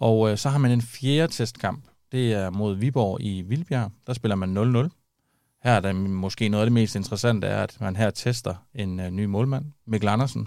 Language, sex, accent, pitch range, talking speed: Danish, male, native, 100-125 Hz, 220 wpm